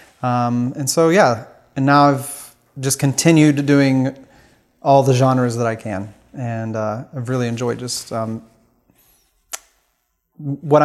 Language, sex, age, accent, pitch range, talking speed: English, male, 30-49, American, 115-140 Hz, 135 wpm